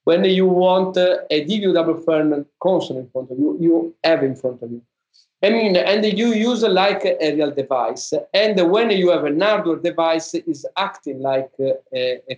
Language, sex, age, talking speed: English, male, 50-69, 185 wpm